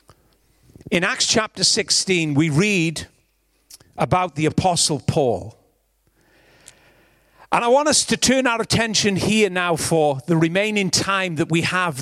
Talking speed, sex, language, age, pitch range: 135 wpm, male, English, 40-59, 165-230 Hz